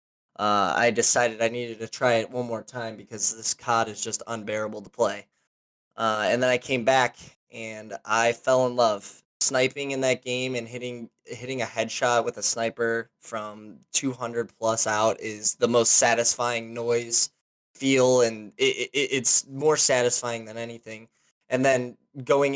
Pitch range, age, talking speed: 115-130 Hz, 10-29, 165 wpm